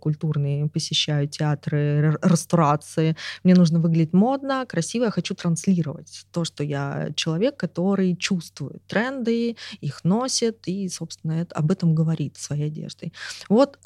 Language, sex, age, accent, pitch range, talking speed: Russian, female, 20-39, native, 165-200 Hz, 130 wpm